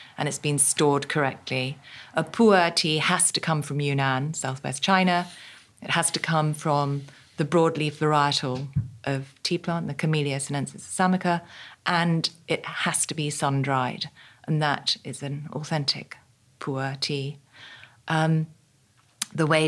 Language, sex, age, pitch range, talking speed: English, female, 40-59, 140-170 Hz, 140 wpm